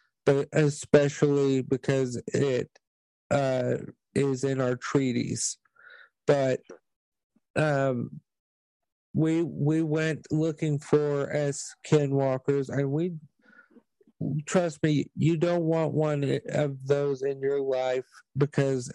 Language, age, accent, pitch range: English, 50-69, American, 130-145 Hz